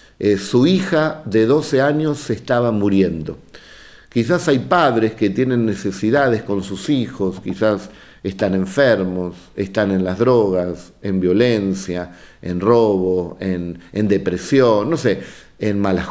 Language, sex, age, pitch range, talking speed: Spanish, male, 50-69, 100-135 Hz, 135 wpm